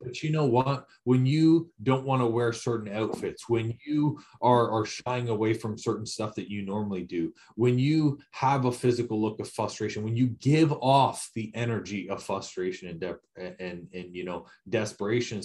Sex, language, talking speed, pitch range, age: male, English, 185 wpm, 105-130 Hz, 30-49